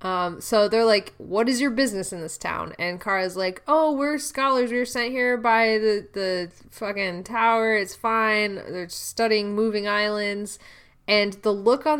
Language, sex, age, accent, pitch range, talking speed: English, female, 20-39, American, 175-230 Hz, 180 wpm